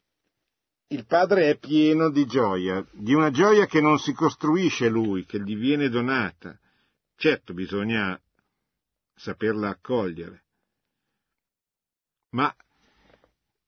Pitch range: 95-135 Hz